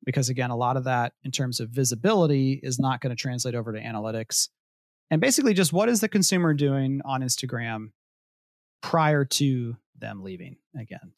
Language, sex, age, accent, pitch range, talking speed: English, male, 30-49, American, 125-155 Hz, 175 wpm